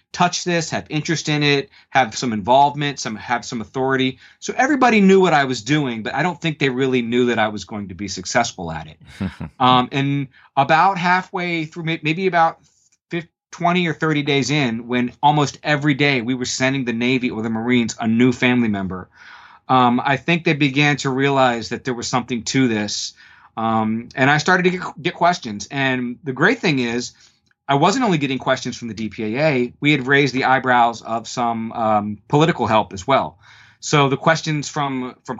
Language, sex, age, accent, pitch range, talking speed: English, male, 30-49, American, 115-155 Hz, 195 wpm